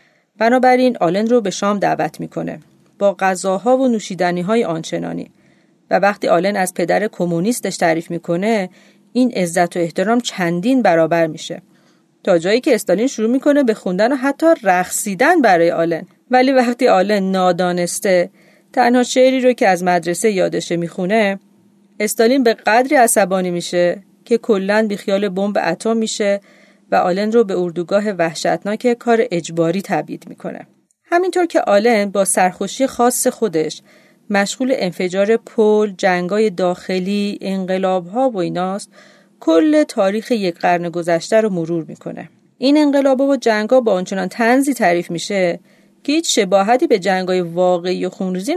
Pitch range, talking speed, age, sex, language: 180-235 Hz, 140 wpm, 40-59, female, Persian